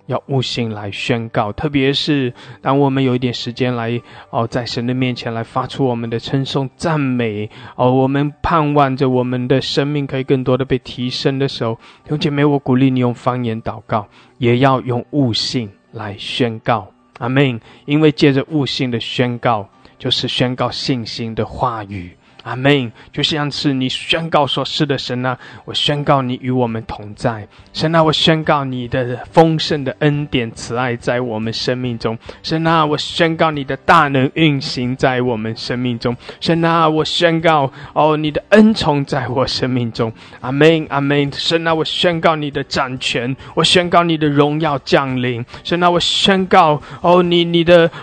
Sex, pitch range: male, 120-155 Hz